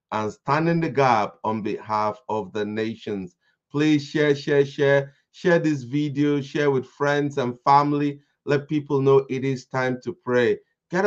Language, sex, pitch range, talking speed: English, male, 125-150 Hz, 165 wpm